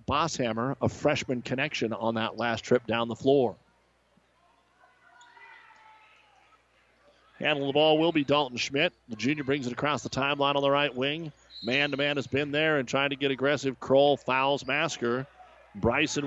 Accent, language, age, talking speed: American, English, 40-59, 155 wpm